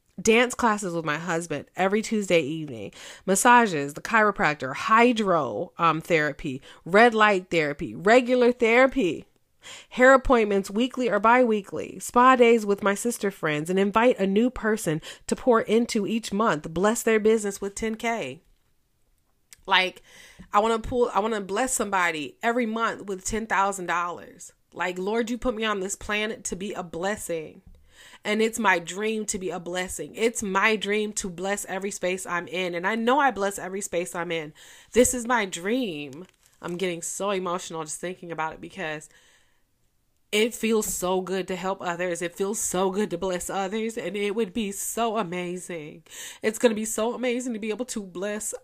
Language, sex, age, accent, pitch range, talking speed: English, female, 30-49, American, 180-225 Hz, 175 wpm